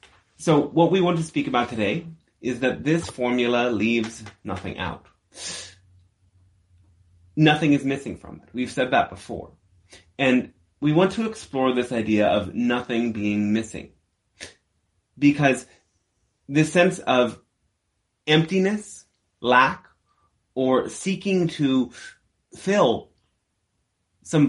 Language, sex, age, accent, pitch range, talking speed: English, male, 30-49, American, 100-150 Hz, 115 wpm